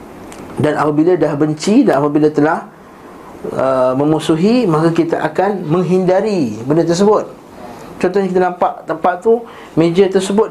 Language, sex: Malay, male